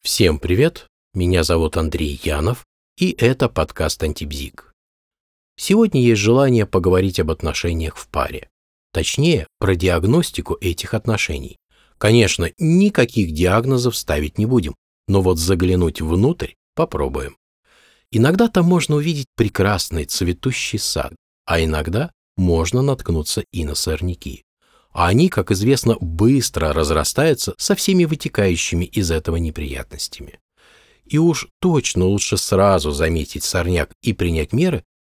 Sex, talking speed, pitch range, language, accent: male, 120 wpm, 80-125 Hz, Russian, native